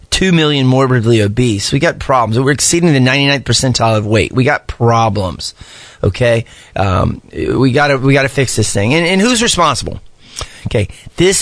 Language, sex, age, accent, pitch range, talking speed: English, male, 30-49, American, 125-180 Hz, 170 wpm